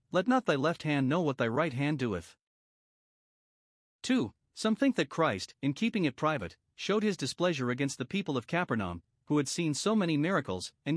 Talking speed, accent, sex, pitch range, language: 190 wpm, American, male, 125-170 Hz, English